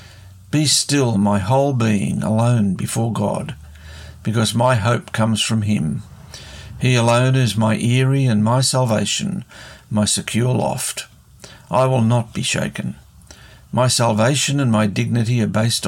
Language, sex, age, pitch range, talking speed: English, male, 60-79, 105-130 Hz, 140 wpm